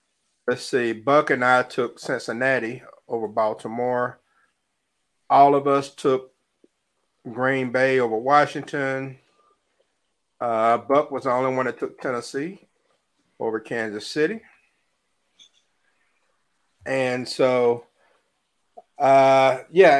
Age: 50-69